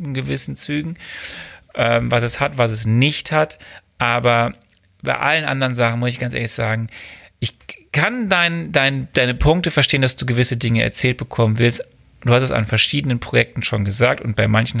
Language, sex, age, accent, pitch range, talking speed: German, male, 30-49, German, 105-125 Hz, 175 wpm